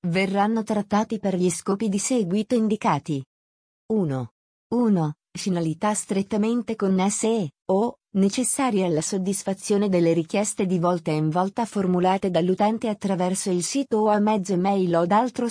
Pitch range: 180-215 Hz